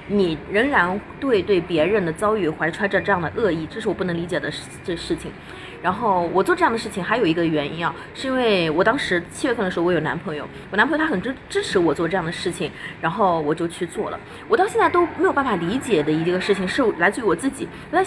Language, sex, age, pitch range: Chinese, female, 20-39, 165-230 Hz